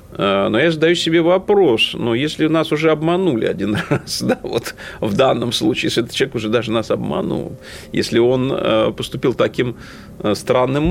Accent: native